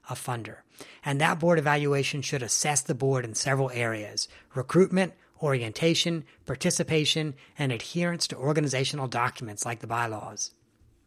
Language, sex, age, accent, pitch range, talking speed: English, male, 40-59, American, 130-155 Hz, 130 wpm